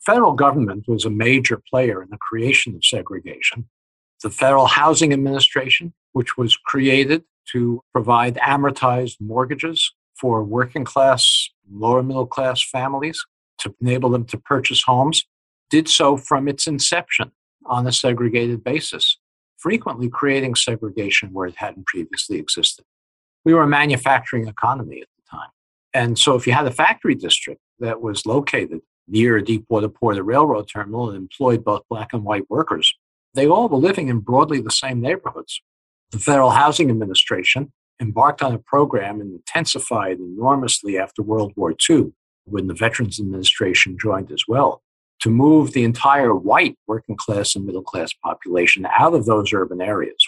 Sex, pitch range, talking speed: male, 110-135 Hz, 160 wpm